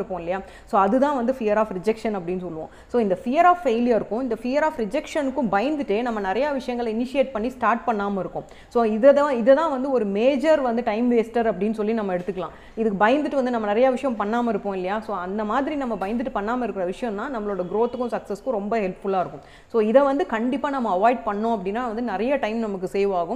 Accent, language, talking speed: native, Tamil, 35 wpm